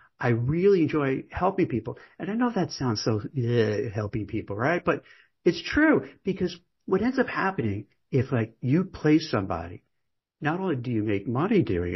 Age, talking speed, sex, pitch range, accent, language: 50-69, 175 wpm, male, 110-155 Hz, American, English